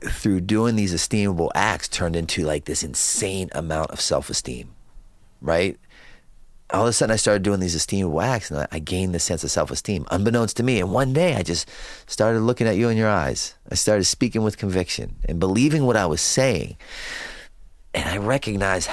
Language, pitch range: English, 90-115 Hz